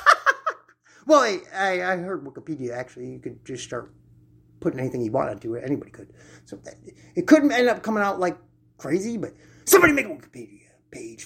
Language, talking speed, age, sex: English, 185 wpm, 30-49, male